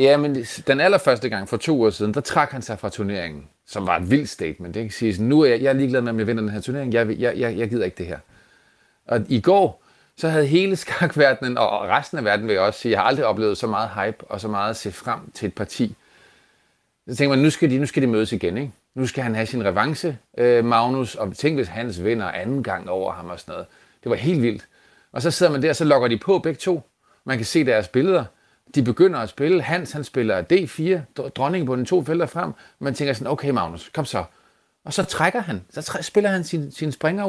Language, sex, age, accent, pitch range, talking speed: Danish, male, 30-49, native, 115-155 Hz, 255 wpm